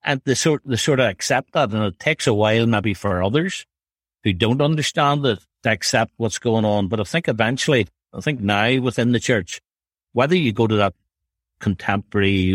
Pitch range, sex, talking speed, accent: 95-120 Hz, male, 195 wpm, Irish